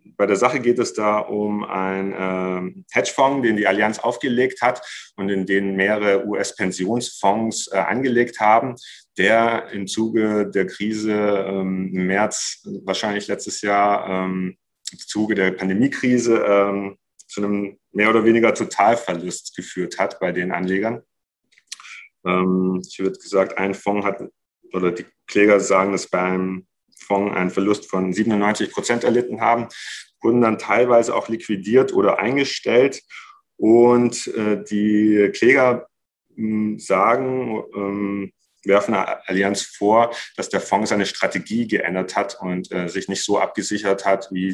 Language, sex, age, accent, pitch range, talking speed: German, male, 40-59, German, 95-115 Hz, 140 wpm